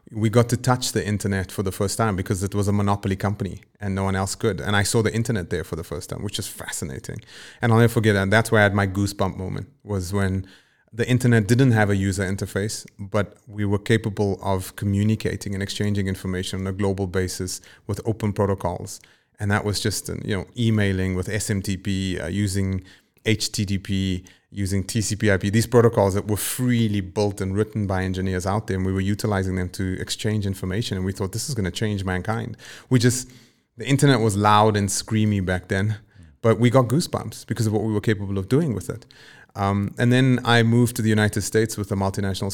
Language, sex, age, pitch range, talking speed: English, male, 30-49, 95-110 Hz, 210 wpm